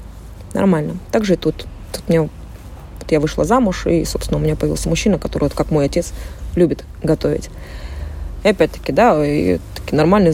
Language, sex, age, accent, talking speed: Russian, female, 30-49, native, 155 wpm